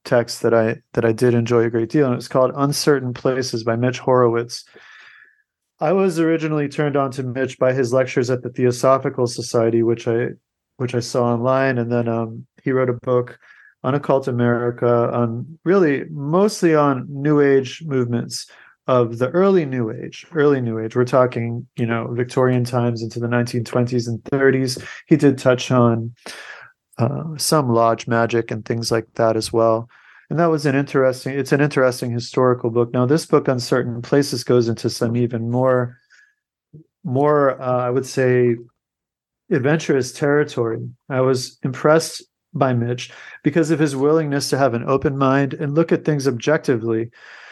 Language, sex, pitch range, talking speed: English, male, 120-145 Hz, 170 wpm